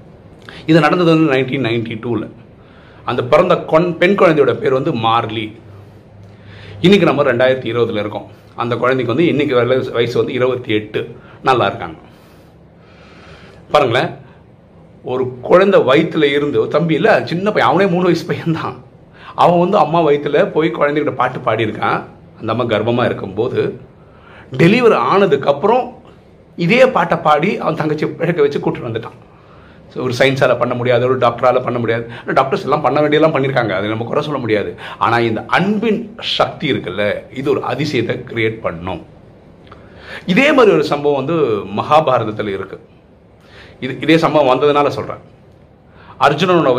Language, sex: Tamil, male